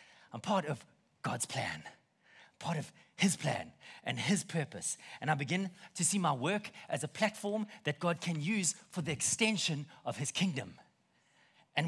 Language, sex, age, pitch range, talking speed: English, male, 30-49, 150-205 Hz, 165 wpm